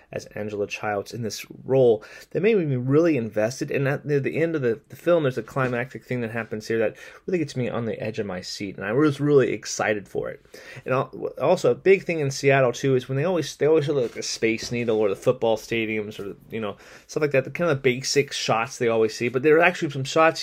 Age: 30-49